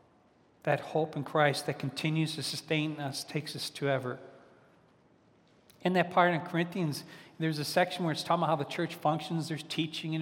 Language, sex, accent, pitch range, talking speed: English, male, American, 140-165 Hz, 190 wpm